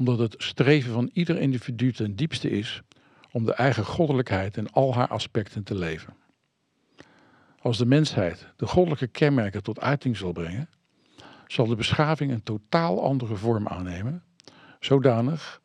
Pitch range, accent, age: 110-135 Hz, Dutch, 50-69